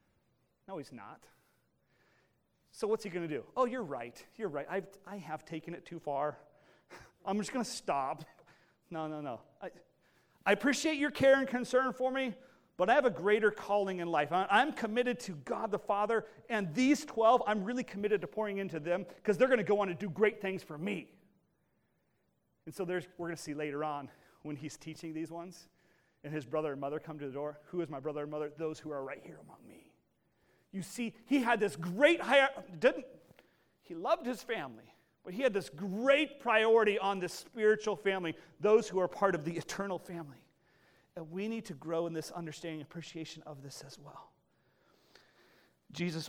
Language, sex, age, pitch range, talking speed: English, male, 40-59, 150-210 Hz, 200 wpm